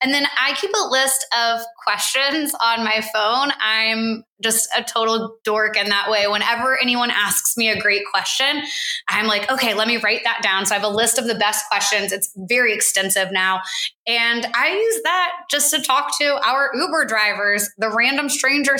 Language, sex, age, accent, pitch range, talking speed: English, female, 20-39, American, 215-280 Hz, 195 wpm